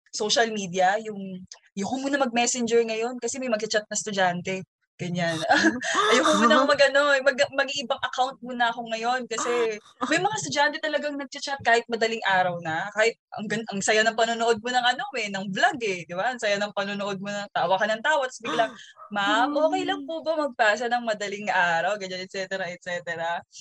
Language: Filipino